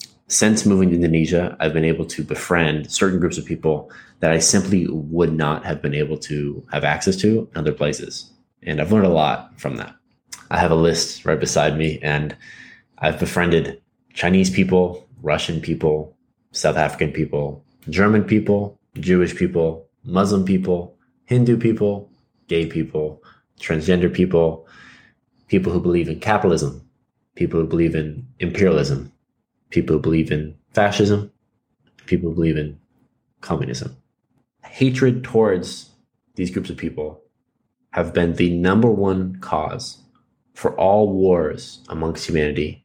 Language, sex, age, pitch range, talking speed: English, male, 20-39, 75-95 Hz, 140 wpm